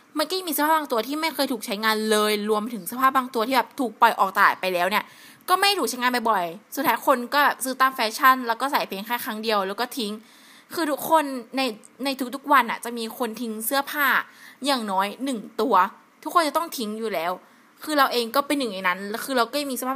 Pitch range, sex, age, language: 215-275 Hz, female, 20-39, Thai